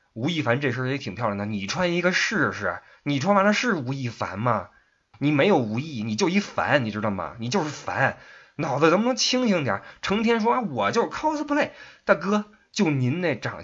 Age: 20-39